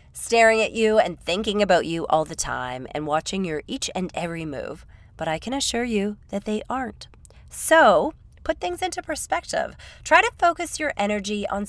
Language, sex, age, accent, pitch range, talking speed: English, female, 30-49, American, 175-280 Hz, 185 wpm